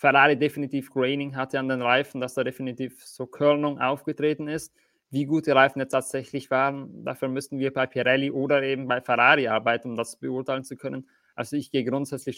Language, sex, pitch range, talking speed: German, male, 130-145 Hz, 195 wpm